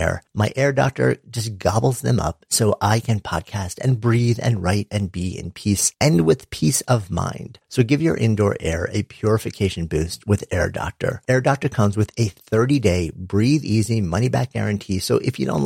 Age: 50-69